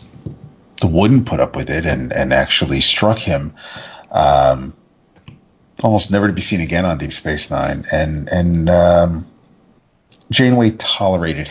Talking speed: 135 wpm